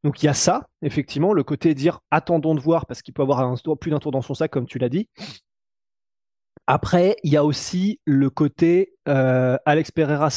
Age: 20-39